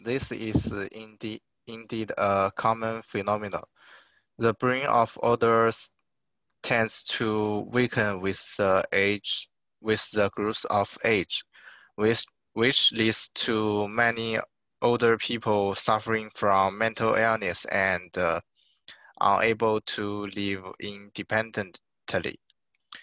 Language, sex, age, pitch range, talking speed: English, male, 20-39, 100-115 Hz, 100 wpm